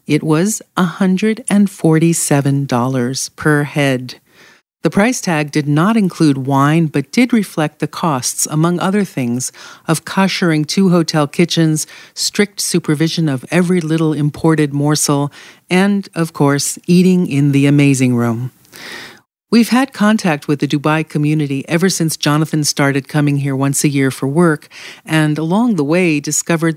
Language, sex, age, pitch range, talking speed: English, female, 50-69, 140-170 Hz, 140 wpm